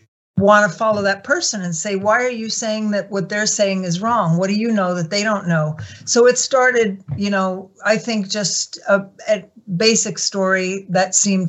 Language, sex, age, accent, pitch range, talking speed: English, female, 50-69, American, 175-210 Hz, 205 wpm